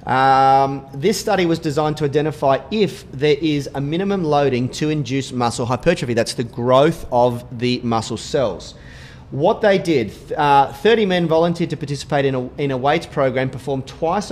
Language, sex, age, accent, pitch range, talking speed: English, male, 30-49, Australian, 130-160 Hz, 170 wpm